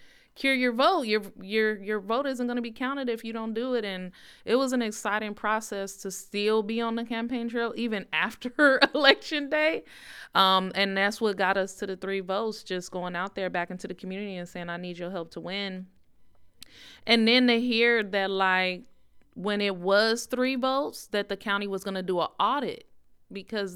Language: English